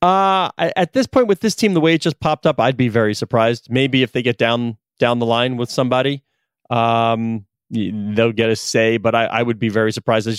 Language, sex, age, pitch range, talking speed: English, male, 30-49, 115-145 Hz, 230 wpm